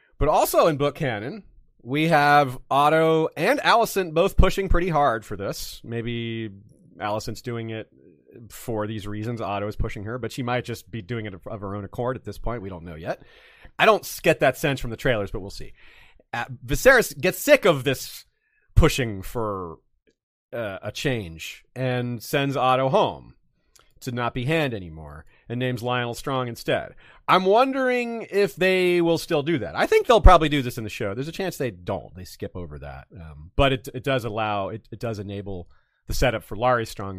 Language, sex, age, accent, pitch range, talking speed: English, male, 30-49, American, 105-140 Hz, 195 wpm